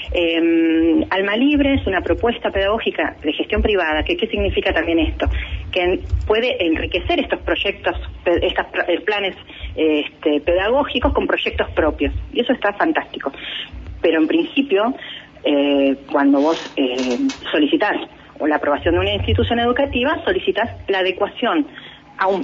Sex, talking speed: female, 135 wpm